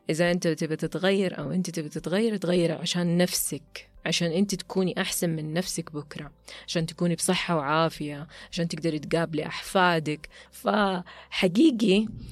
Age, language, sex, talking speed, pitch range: 30-49, Arabic, female, 130 wpm, 165-190 Hz